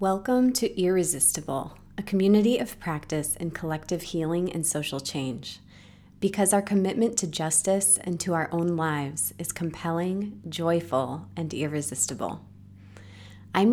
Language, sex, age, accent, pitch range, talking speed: English, female, 30-49, American, 150-190 Hz, 125 wpm